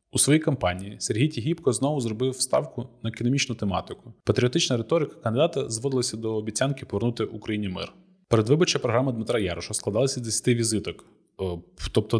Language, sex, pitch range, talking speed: Ukrainian, male, 105-135 Hz, 155 wpm